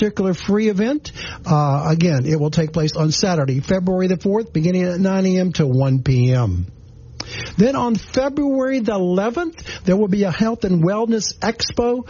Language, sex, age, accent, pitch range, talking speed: English, male, 60-79, American, 155-205 Hz, 170 wpm